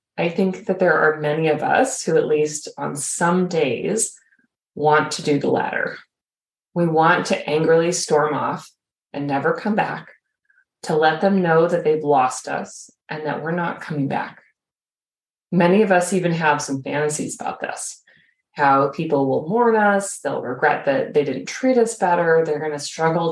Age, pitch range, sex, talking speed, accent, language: 30-49, 150-195 Hz, female, 180 wpm, American, English